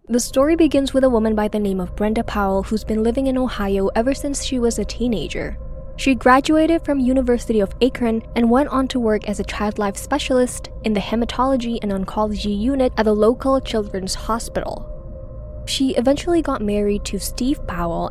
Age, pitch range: 10-29, 210-265 Hz